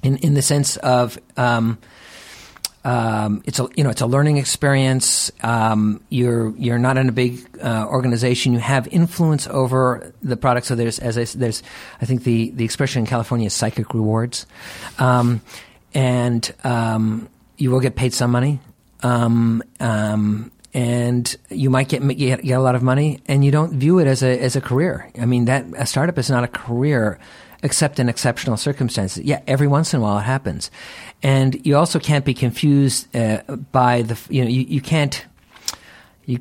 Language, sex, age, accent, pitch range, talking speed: English, male, 50-69, American, 115-140 Hz, 185 wpm